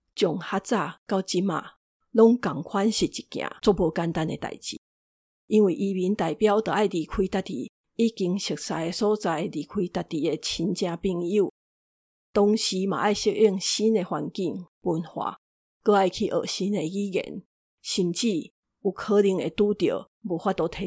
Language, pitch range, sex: Chinese, 175-215 Hz, female